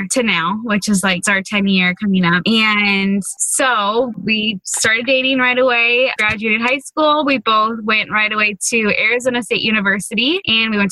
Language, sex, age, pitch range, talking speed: English, female, 10-29, 200-250 Hz, 175 wpm